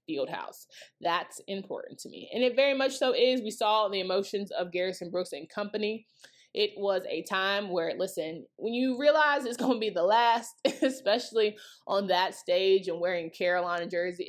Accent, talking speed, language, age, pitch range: American, 180 wpm, English, 20-39, 180-225 Hz